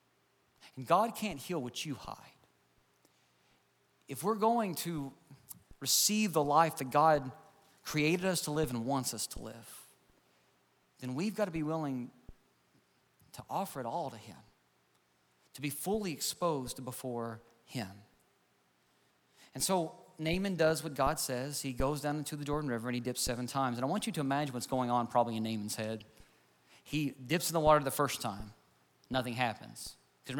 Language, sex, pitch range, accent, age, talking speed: English, male, 120-160 Hz, American, 40-59, 175 wpm